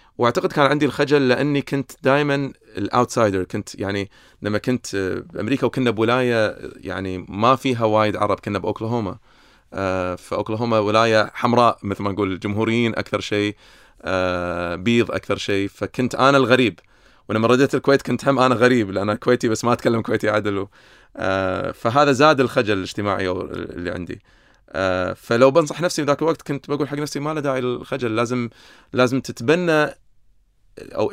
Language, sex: Arabic, male